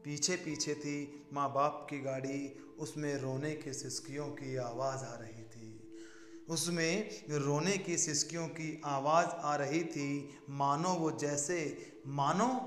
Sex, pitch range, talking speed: male, 140-165 Hz, 135 wpm